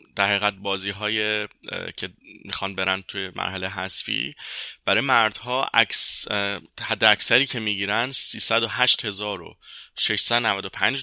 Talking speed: 120 wpm